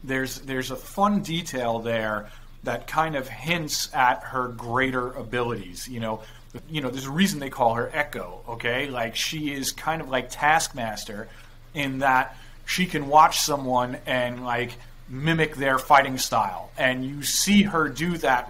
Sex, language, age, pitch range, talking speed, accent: male, English, 30-49, 120-145 Hz, 165 wpm, American